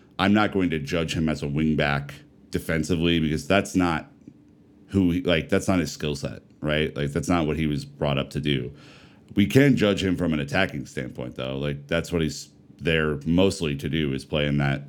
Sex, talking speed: male, 220 wpm